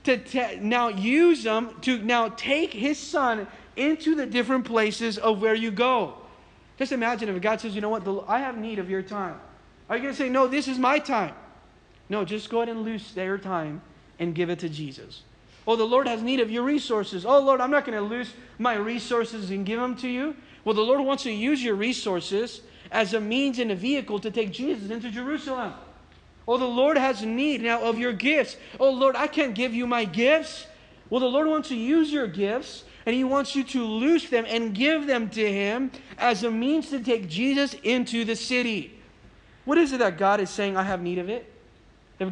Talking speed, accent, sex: 220 wpm, American, male